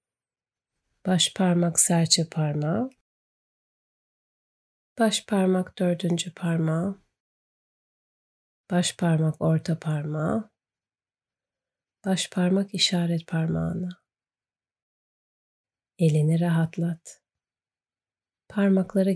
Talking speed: 60 wpm